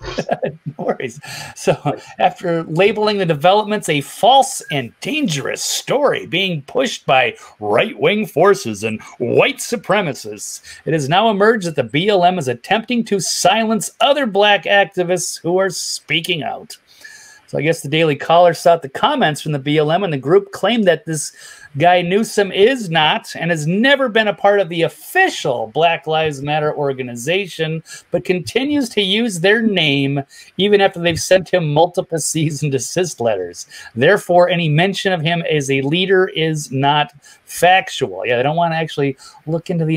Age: 30-49